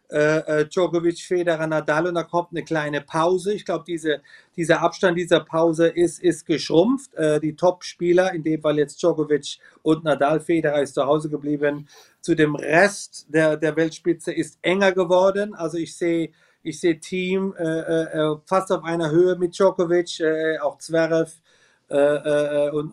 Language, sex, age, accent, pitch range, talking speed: German, male, 40-59, German, 155-180 Hz, 170 wpm